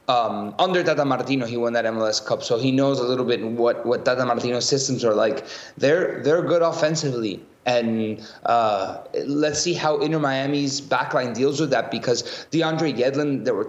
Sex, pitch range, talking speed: male, 120-150 Hz, 180 wpm